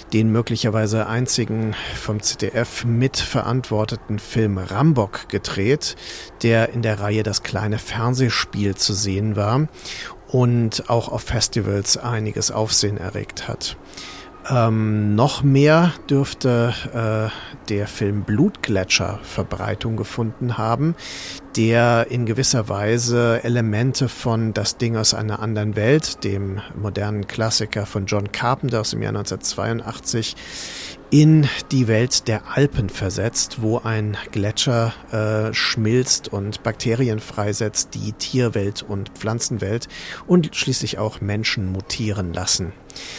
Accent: German